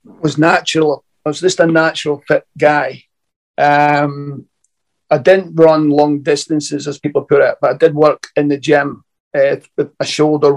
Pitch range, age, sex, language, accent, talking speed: 145-165 Hz, 50-69, male, English, British, 170 wpm